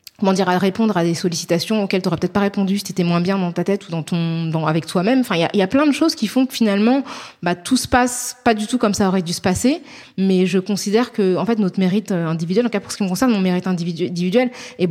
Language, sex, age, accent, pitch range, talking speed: French, female, 20-39, French, 180-225 Hz, 295 wpm